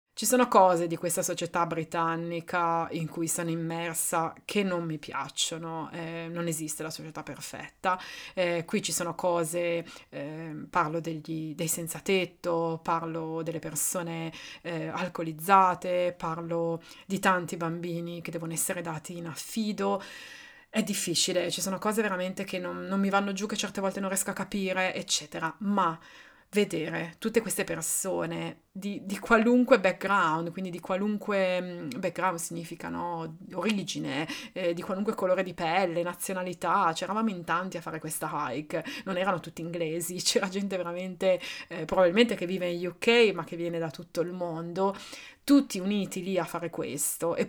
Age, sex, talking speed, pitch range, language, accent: 20-39, female, 155 wpm, 170-200 Hz, Italian, native